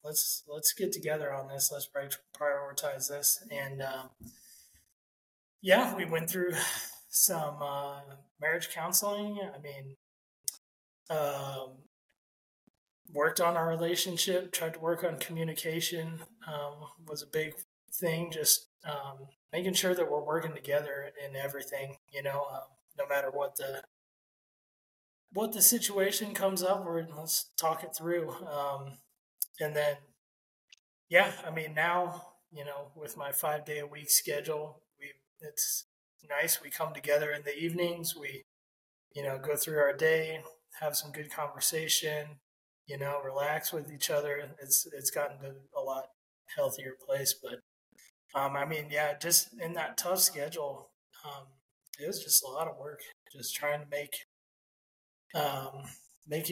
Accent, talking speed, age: American, 145 wpm, 20-39